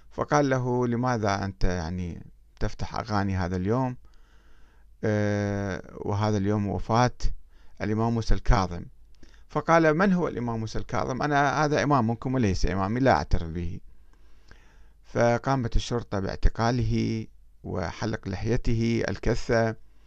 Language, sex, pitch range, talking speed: Arabic, male, 95-135 Hz, 110 wpm